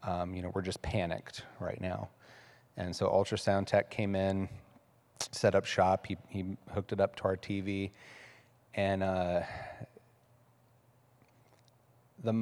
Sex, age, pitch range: male, 30-49, 95-120 Hz